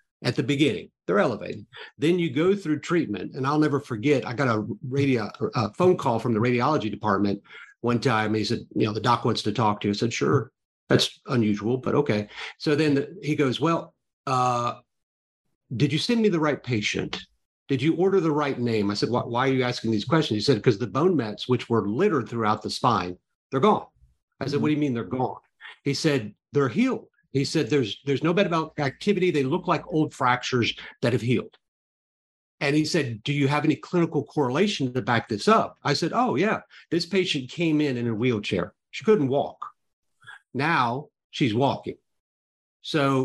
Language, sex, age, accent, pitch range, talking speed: English, male, 50-69, American, 115-150 Hz, 205 wpm